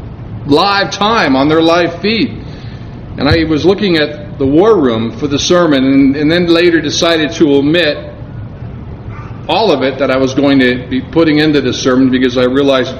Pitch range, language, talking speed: 125-180 Hz, English, 190 wpm